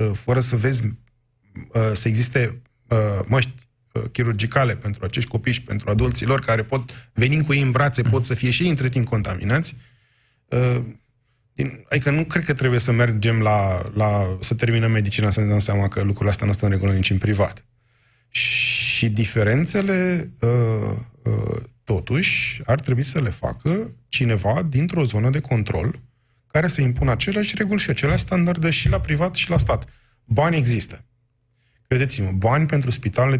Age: 20-39